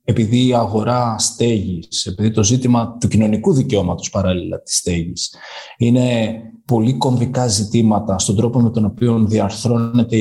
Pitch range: 105-145 Hz